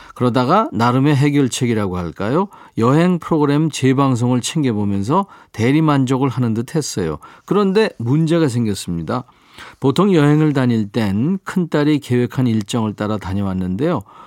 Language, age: Korean, 40-59